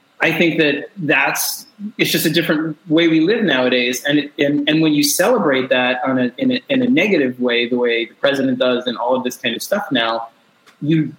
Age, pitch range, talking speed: 30-49, 130-160 Hz, 220 wpm